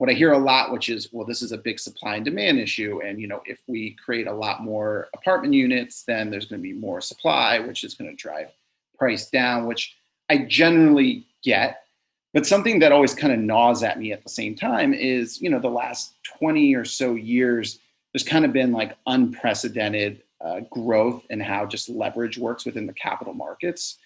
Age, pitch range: 30-49, 115-175 Hz